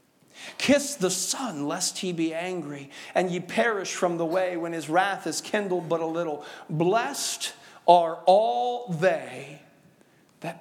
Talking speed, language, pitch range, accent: 145 wpm, English, 155-225 Hz, American